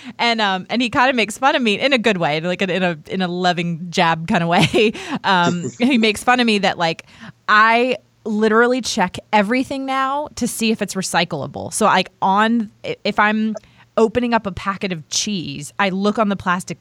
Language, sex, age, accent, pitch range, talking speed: English, female, 30-49, American, 170-225 Hz, 205 wpm